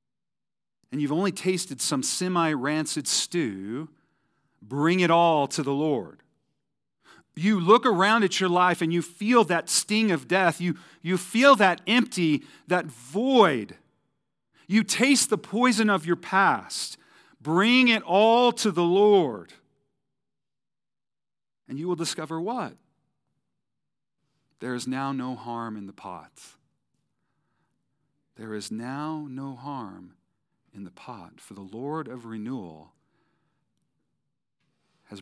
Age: 40-59